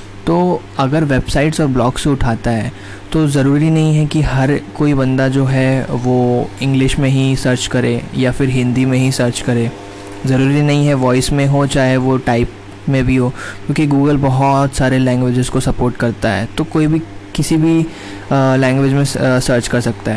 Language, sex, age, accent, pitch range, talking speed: Hindi, male, 20-39, native, 120-145 Hz, 185 wpm